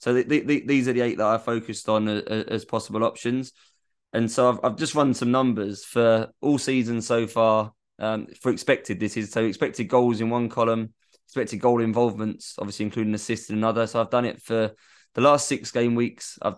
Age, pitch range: 20-39, 105-120 Hz